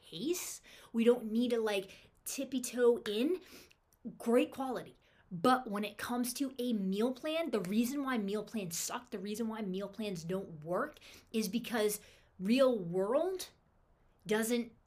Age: 20-39